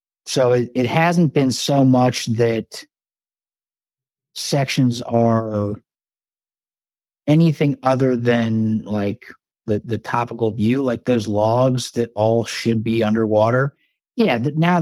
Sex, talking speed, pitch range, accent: male, 115 wpm, 110-125 Hz, American